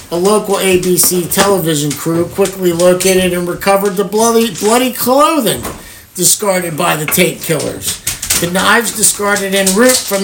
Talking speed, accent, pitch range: 140 wpm, American, 160-200 Hz